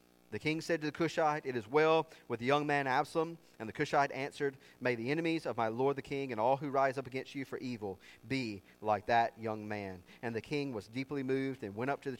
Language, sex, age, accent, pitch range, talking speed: English, male, 30-49, American, 105-140 Hz, 250 wpm